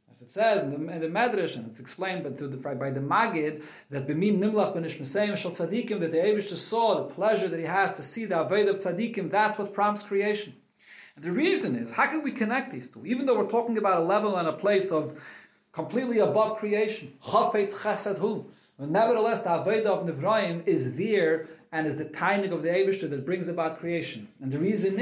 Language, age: English, 40-59